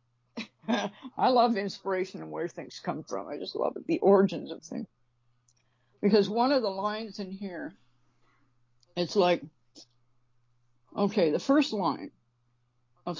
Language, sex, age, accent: English, female, 60-79, American